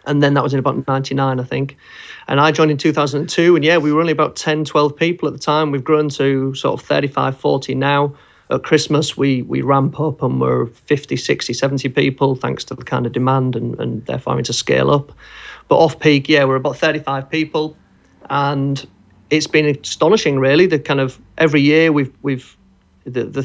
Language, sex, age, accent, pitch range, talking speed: English, male, 30-49, British, 125-145 Hz, 205 wpm